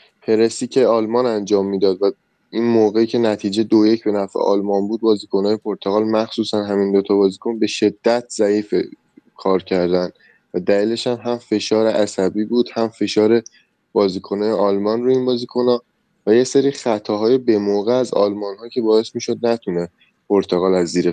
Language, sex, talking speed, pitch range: Persian, male, 155 wpm, 100-120 Hz